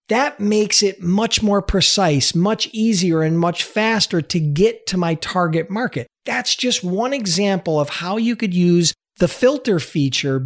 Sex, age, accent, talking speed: male, 40-59, American, 165 wpm